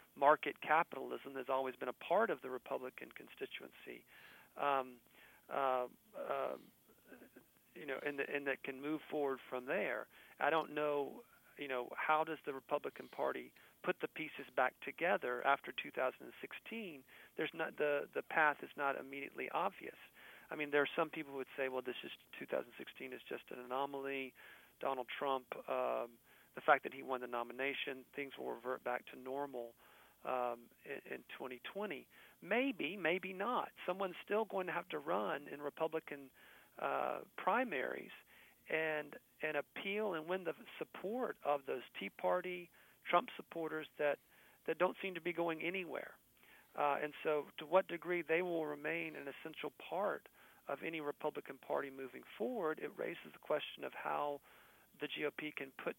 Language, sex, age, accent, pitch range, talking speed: English, male, 40-59, American, 135-160 Hz, 160 wpm